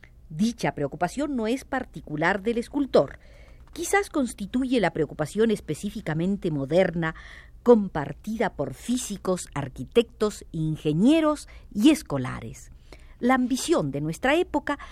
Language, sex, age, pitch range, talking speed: Spanish, female, 50-69, 155-260 Hz, 100 wpm